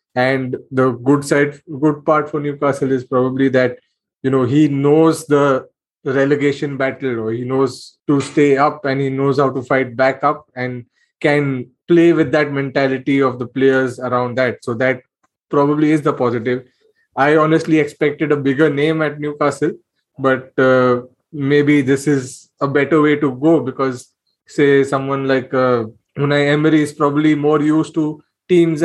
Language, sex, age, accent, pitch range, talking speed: English, male, 20-39, Indian, 130-150 Hz, 165 wpm